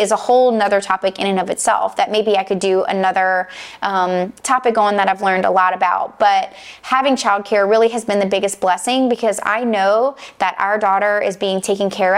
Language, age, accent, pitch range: English, 20-39, American, 200-260 Hz